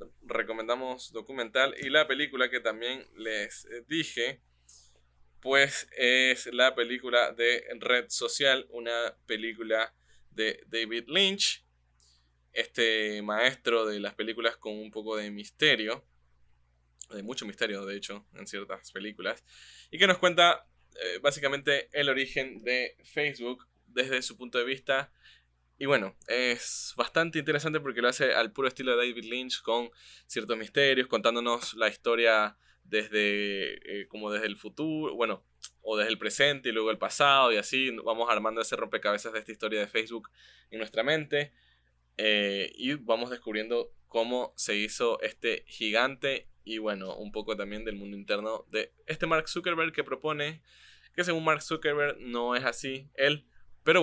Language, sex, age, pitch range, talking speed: Spanish, male, 10-29, 105-135 Hz, 150 wpm